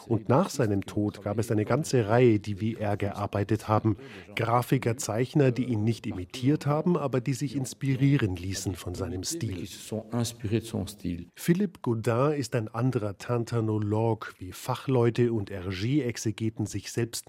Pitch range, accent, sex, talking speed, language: 110-135 Hz, German, male, 140 wpm, German